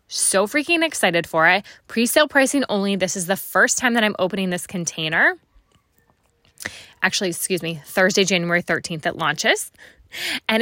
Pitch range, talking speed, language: 185-235 Hz, 155 wpm, English